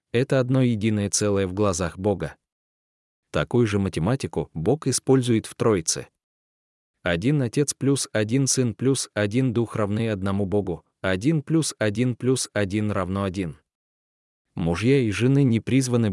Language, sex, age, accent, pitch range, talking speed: Russian, male, 20-39, native, 95-125 Hz, 140 wpm